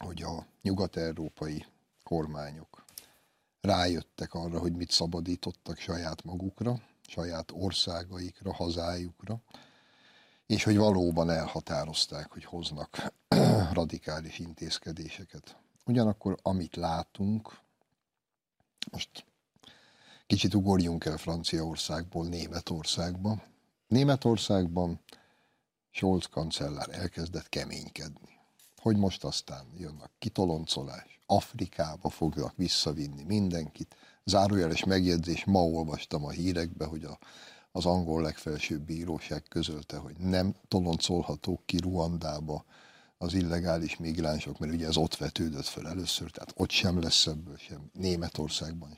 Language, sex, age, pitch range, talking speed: Hungarian, male, 60-79, 80-95 Hz, 100 wpm